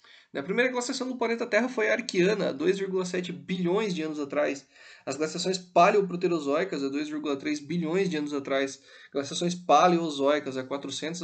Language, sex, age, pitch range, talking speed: Portuguese, male, 20-39, 145-195 Hz, 150 wpm